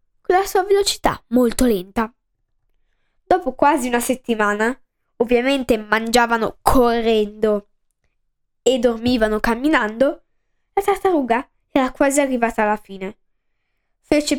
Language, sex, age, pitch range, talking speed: Italian, female, 10-29, 230-305 Hz, 100 wpm